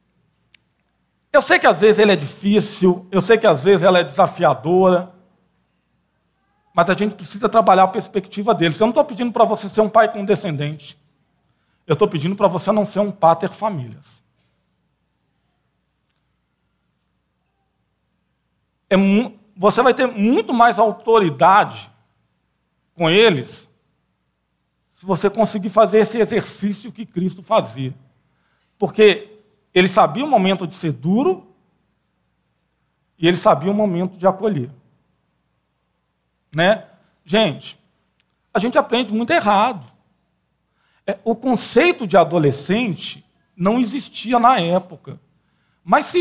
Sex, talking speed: male, 125 wpm